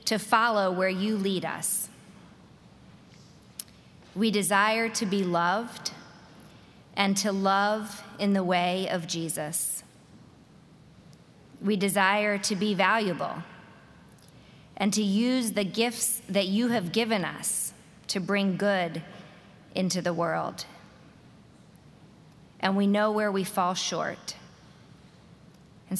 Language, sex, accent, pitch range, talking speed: English, female, American, 180-205 Hz, 110 wpm